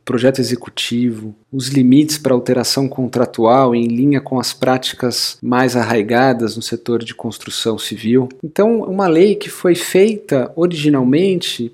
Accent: Brazilian